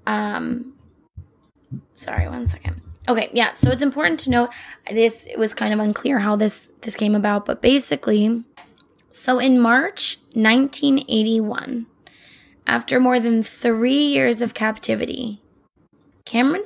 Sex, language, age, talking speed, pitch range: female, English, 10-29, 130 wpm, 215-260 Hz